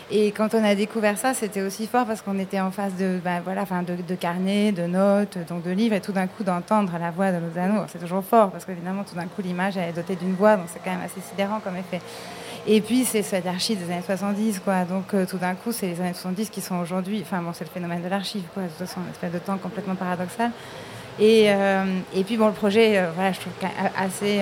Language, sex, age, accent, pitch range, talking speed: French, female, 20-39, French, 180-210 Hz, 255 wpm